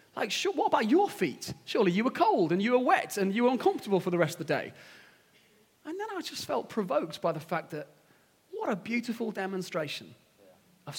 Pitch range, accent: 155-205 Hz, British